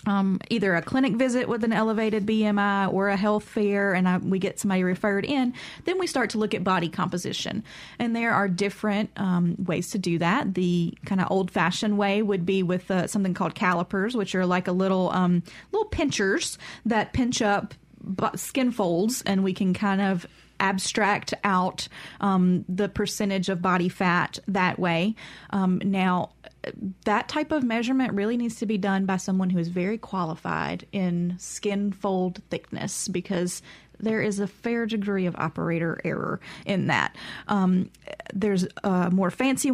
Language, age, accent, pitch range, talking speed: English, 30-49, American, 185-210 Hz, 170 wpm